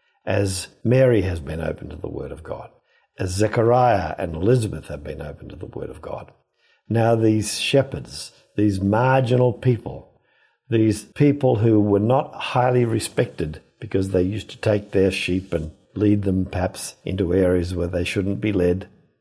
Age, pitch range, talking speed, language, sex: 50-69, 95-130 Hz, 165 wpm, English, male